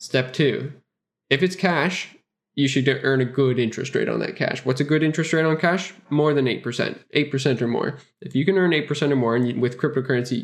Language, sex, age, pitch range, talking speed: English, male, 10-29, 115-140 Hz, 235 wpm